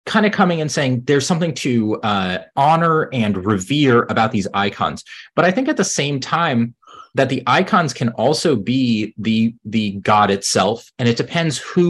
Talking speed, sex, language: 180 wpm, male, English